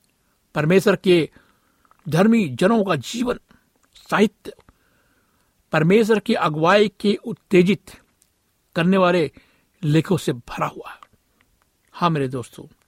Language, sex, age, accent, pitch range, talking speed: Hindi, male, 60-79, native, 150-200 Hz, 100 wpm